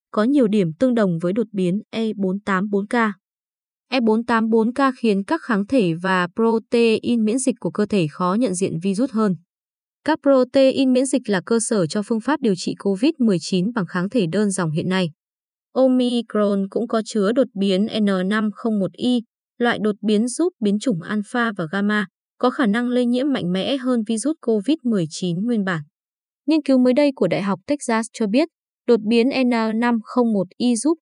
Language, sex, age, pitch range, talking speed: Vietnamese, female, 20-39, 195-250 Hz, 175 wpm